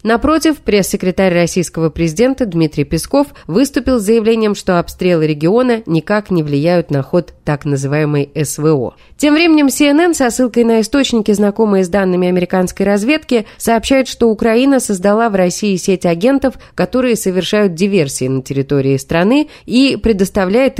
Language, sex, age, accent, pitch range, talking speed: Russian, female, 20-39, native, 170-235 Hz, 140 wpm